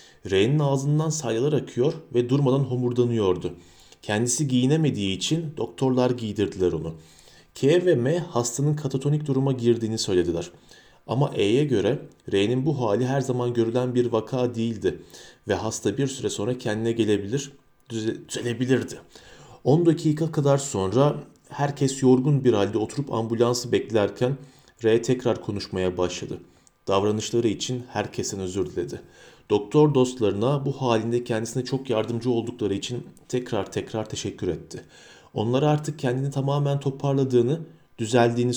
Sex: male